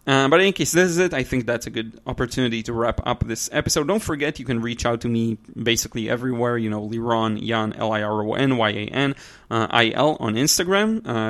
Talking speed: 195 wpm